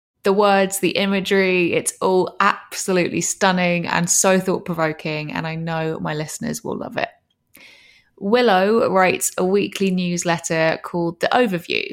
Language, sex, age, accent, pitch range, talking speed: English, female, 20-39, British, 165-195 Hz, 135 wpm